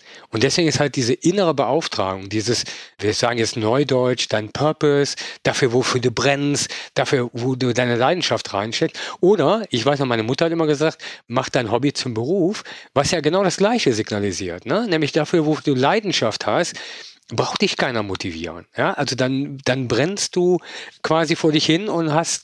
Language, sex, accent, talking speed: German, male, German, 180 wpm